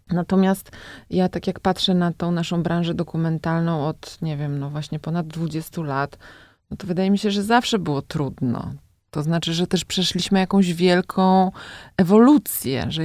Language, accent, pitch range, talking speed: Polish, native, 155-185 Hz, 160 wpm